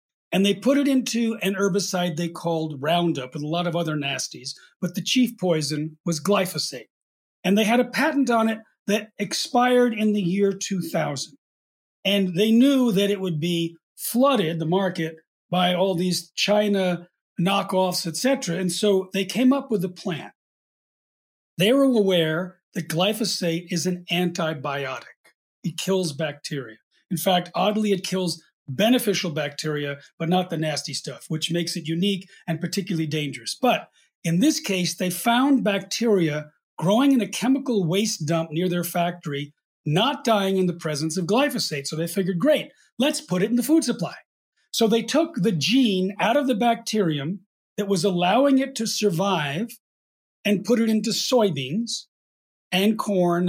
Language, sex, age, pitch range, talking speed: English, male, 40-59, 165-220 Hz, 165 wpm